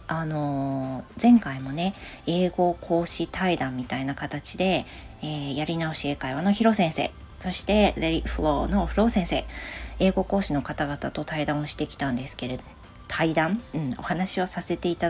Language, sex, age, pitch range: Japanese, female, 40-59, 150-200 Hz